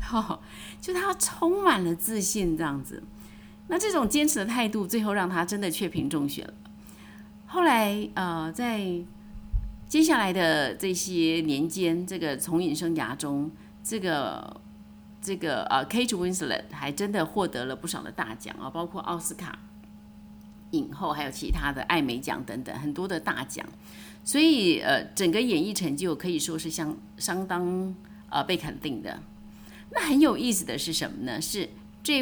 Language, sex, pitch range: Chinese, female, 160-215 Hz